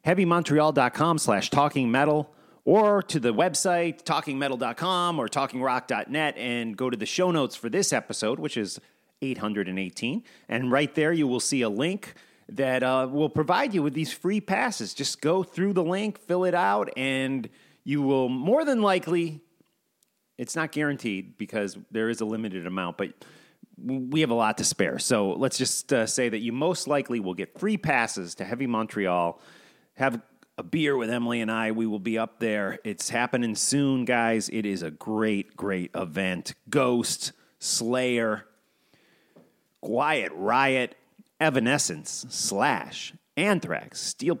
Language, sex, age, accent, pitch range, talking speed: English, male, 30-49, American, 115-160 Hz, 155 wpm